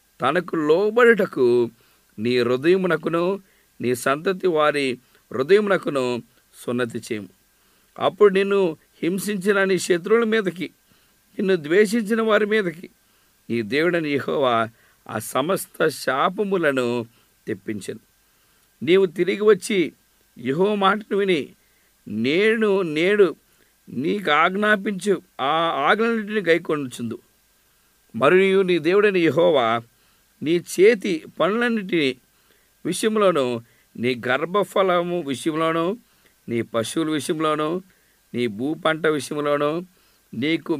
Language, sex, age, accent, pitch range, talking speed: English, male, 50-69, Indian, 140-200 Hz, 75 wpm